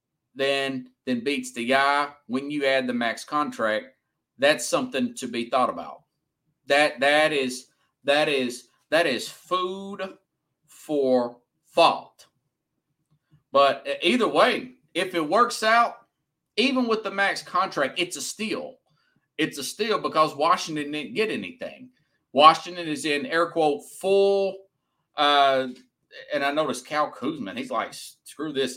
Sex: male